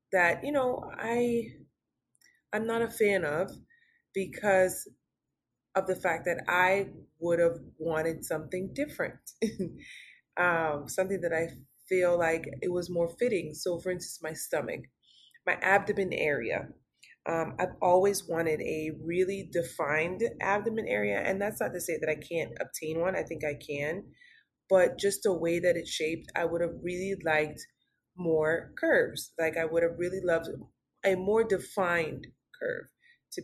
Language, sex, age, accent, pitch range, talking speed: English, female, 20-39, American, 160-195 Hz, 155 wpm